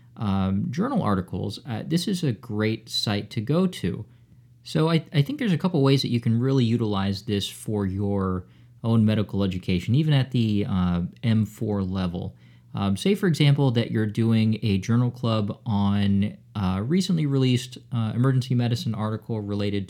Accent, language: American, English